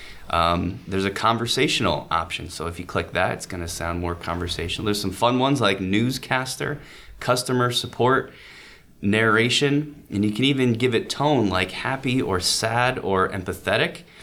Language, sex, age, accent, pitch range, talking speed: English, male, 20-39, American, 85-110 Hz, 160 wpm